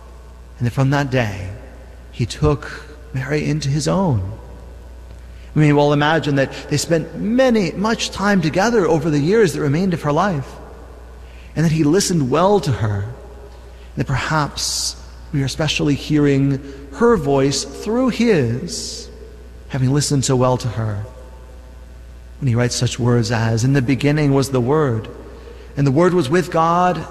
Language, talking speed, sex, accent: English, 155 wpm, male, American